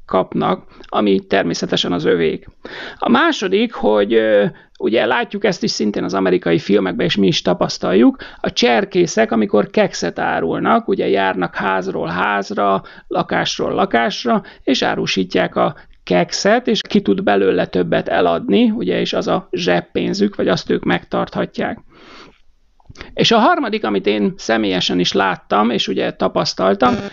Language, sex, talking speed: Hungarian, male, 135 wpm